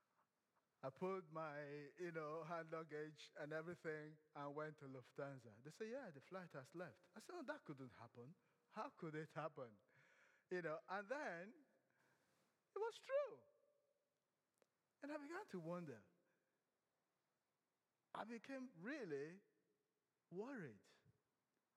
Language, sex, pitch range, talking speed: English, male, 155-200 Hz, 125 wpm